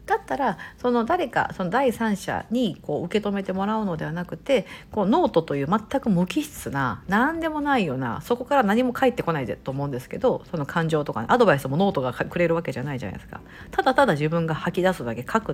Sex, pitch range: female, 150-240 Hz